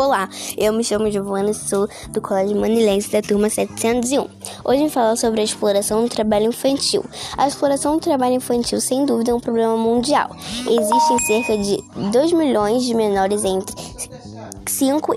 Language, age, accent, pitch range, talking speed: Portuguese, 10-29, Brazilian, 215-260 Hz, 165 wpm